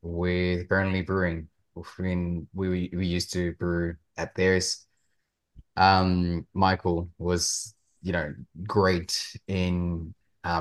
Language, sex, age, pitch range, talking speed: English, male, 30-49, 85-100 Hz, 105 wpm